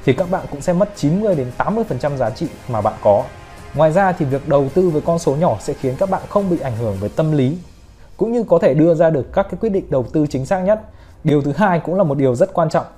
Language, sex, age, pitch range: Vietnamese, male, 20-39, 125-175 Hz